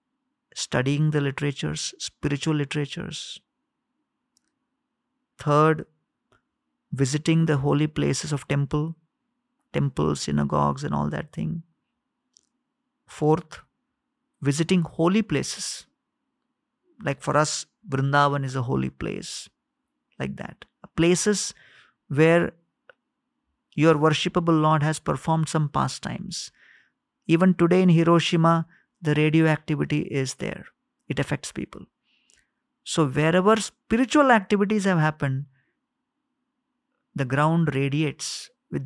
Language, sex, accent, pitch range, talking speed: English, male, Indian, 150-250 Hz, 95 wpm